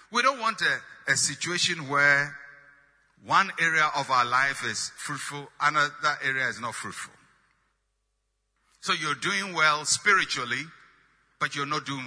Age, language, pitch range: 60-79, English, 140-195 Hz